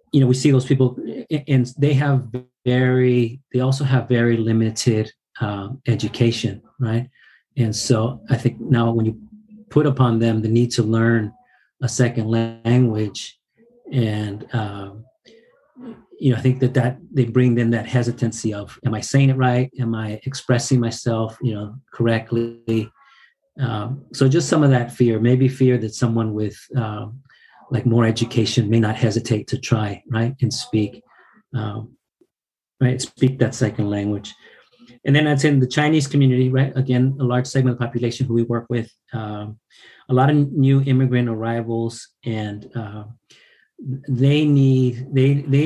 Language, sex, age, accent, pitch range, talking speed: English, male, 40-59, American, 115-130 Hz, 160 wpm